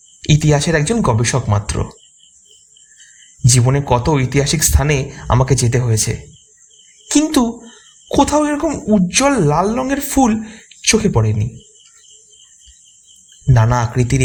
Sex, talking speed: male, 95 wpm